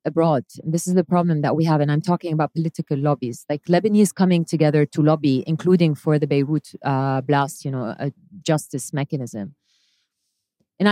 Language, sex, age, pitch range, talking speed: English, female, 30-49, 140-175 Hz, 175 wpm